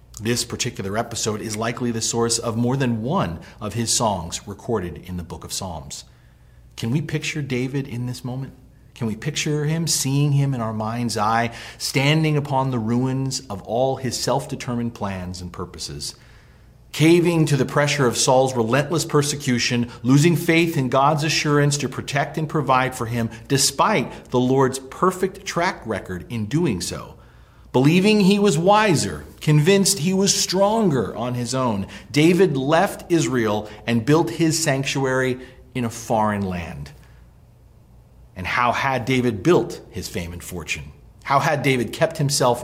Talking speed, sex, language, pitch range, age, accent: 160 wpm, male, English, 110-150 Hz, 40-59, American